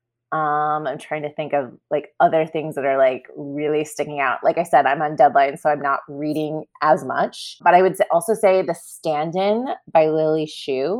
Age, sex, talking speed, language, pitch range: 30-49, female, 200 wpm, English, 135-165 Hz